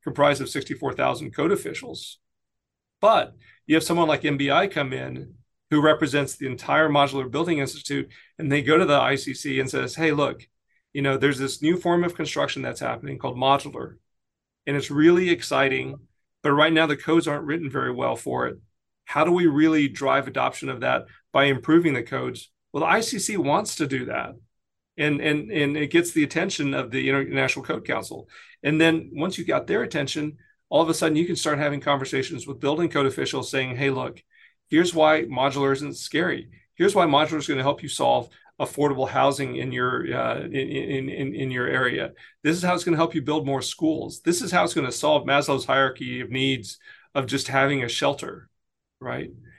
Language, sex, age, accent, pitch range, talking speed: English, male, 40-59, American, 135-155 Hz, 200 wpm